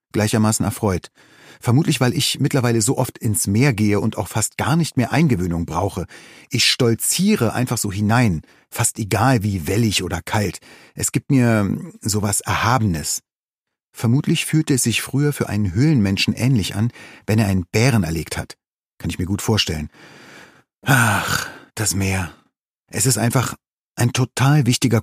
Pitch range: 100-130 Hz